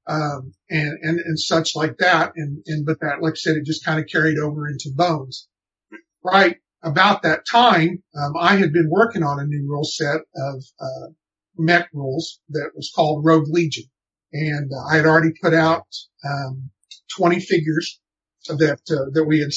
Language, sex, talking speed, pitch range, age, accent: English, male, 185 wpm, 150-170 Hz, 50-69, American